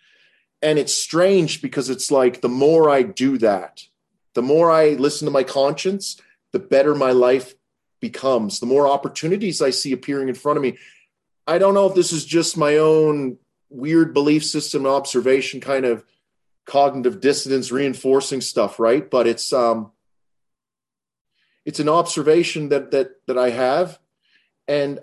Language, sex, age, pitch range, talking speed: English, male, 30-49, 130-165 Hz, 155 wpm